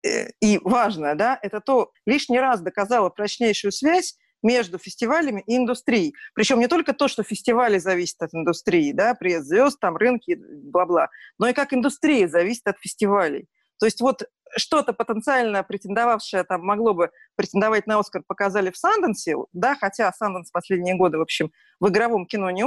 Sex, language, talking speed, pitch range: female, Russian, 160 wpm, 200-270 Hz